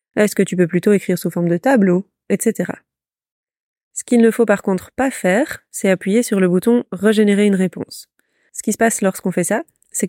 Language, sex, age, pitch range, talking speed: French, female, 20-39, 190-220 Hz, 220 wpm